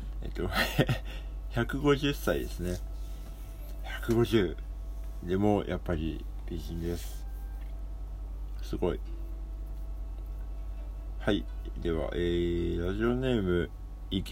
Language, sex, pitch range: Japanese, male, 75-105 Hz